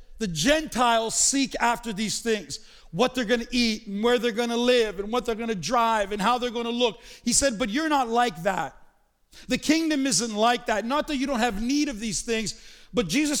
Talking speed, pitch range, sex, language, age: 235 wpm, 230-280 Hz, male, English, 50-69